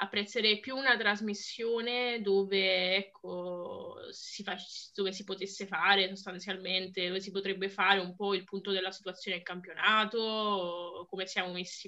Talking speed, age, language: 140 wpm, 20-39, Italian